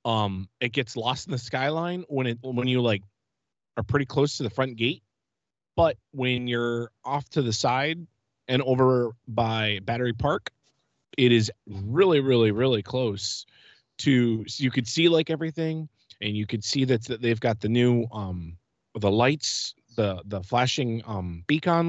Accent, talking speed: American, 165 wpm